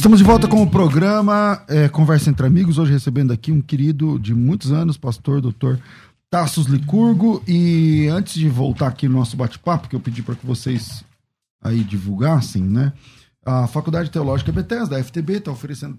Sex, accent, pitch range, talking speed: male, Brazilian, 120-155 Hz, 175 wpm